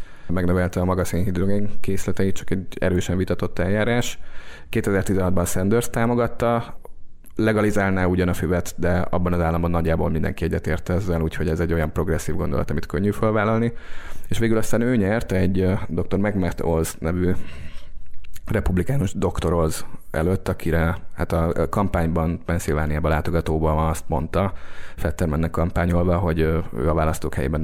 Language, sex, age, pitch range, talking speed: Hungarian, male, 30-49, 85-95 Hz, 140 wpm